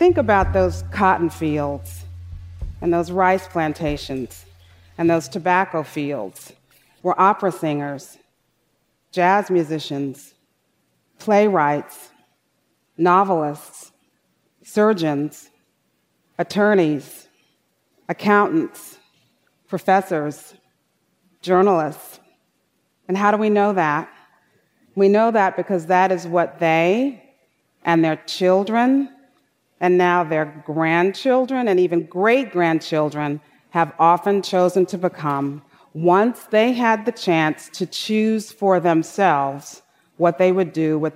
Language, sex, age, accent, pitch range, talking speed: English, female, 40-59, American, 155-195 Hz, 100 wpm